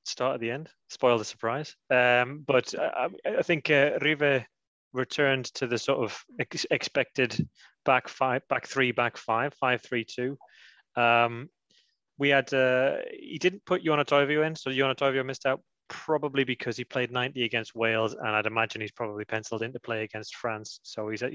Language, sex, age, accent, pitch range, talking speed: English, male, 30-49, British, 115-135 Hz, 175 wpm